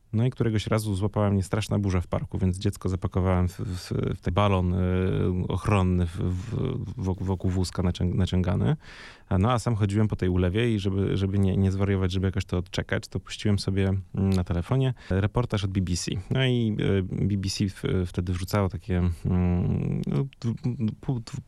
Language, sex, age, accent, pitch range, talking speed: Polish, male, 30-49, native, 95-105 Hz, 155 wpm